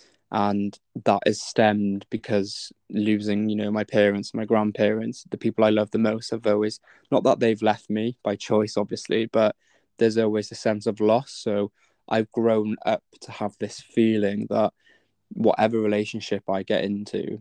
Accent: British